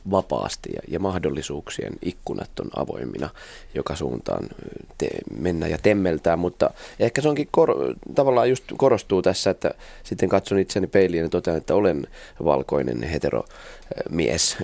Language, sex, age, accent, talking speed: Finnish, male, 20-39, native, 140 wpm